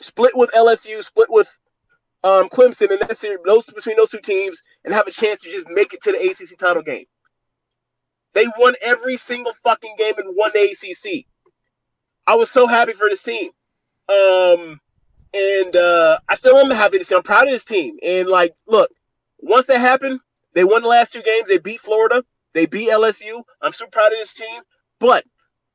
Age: 30-49